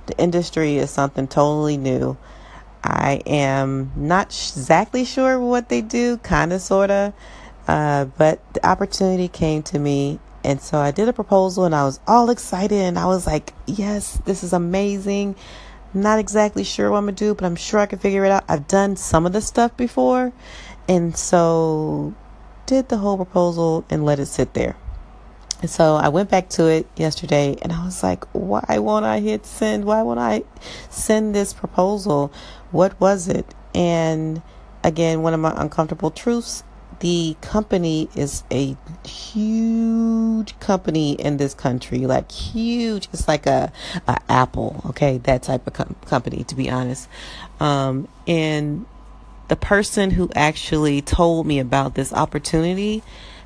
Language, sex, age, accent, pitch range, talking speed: English, female, 30-49, American, 145-200 Hz, 160 wpm